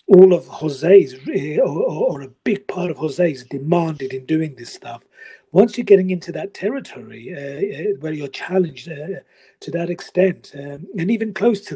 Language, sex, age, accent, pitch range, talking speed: English, male, 40-59, British, 145-190 Hz, 170 wpm